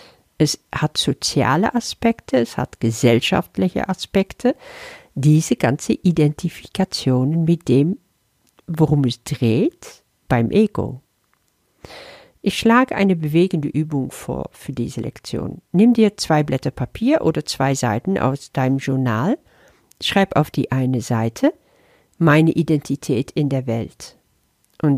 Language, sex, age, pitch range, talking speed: German, female, 50-69, 135-190 Hz, 120 wpm